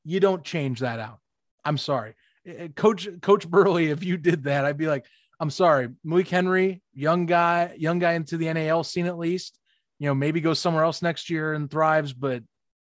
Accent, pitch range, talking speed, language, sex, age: American, 135-170 Hz, 195 wpm, English, male, 30-49